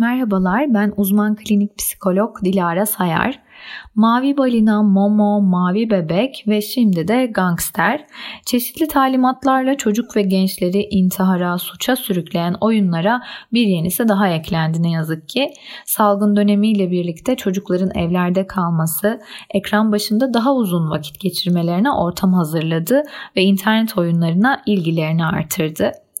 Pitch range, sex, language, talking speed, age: 180-230 Hz, female, Turkish, 115 wpm, 30-49